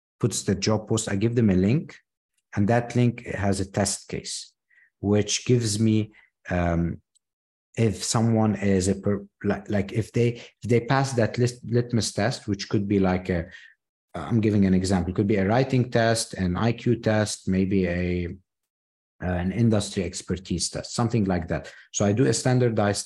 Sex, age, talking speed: male, 50-69, 165 wpm